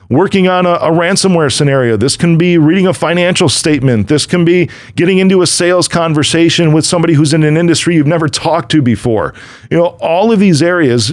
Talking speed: 205 wpm